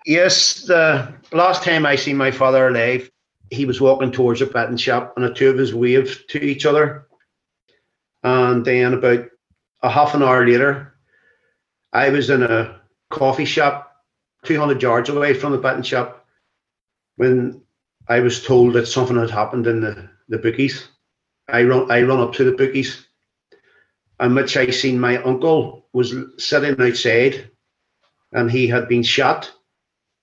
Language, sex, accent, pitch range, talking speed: English, male, British, 120-140 Hz, 155 wpm